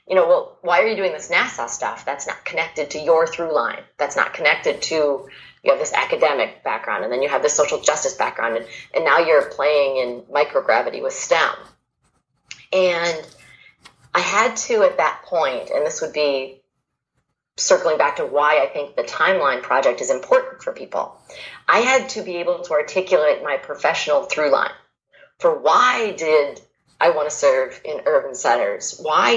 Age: 30-49